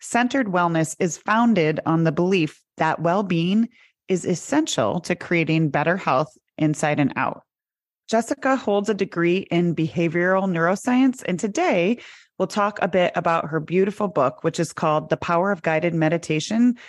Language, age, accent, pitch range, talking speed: English, 30-49, American, 165-225 Hz, 155 wpm